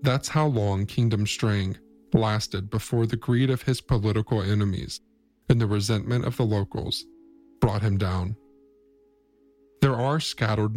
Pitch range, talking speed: 105-130 Hz, 140 wpm